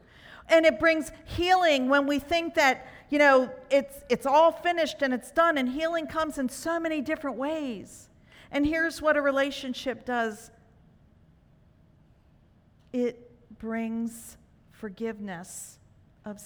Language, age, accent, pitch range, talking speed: English, 50-69, American, 230-300 Hz, 130 wpm